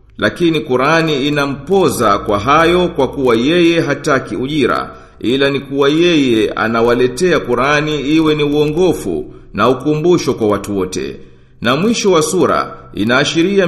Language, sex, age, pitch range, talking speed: Swahili, male, 50-69, 120-165 Hz, 125 wpm